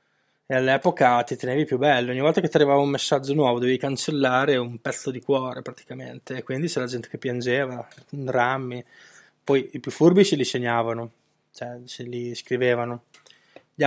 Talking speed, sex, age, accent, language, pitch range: 175 wpm, male, 20-39, native, Italian, 125-140 Hz